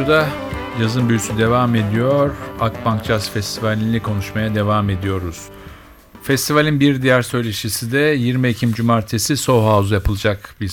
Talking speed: 130 wpm